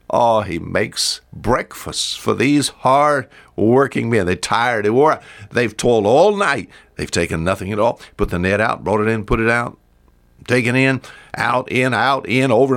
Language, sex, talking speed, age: English, male, 185 wpm, 60-79